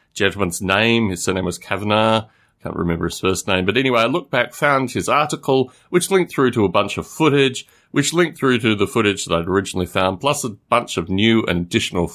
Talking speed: 220 wpm